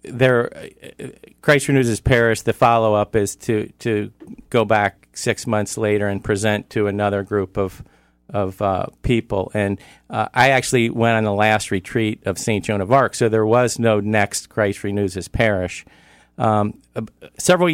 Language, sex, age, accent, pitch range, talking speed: English, male, 50-69, American, 100-120 Hz, 165 wpm